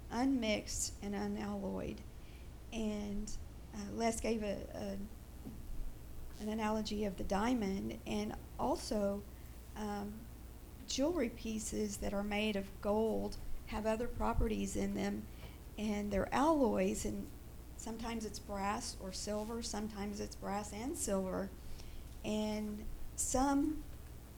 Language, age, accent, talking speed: English, 50-69, American, 110 wpm